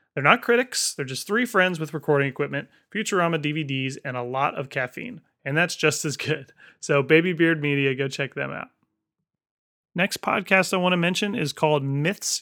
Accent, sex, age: American, male, 30-49